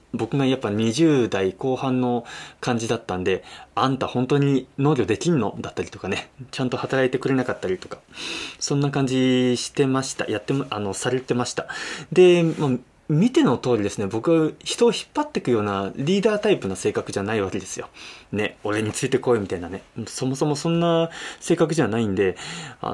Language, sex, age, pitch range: Japanese, male, 20-39, 115-165 Hz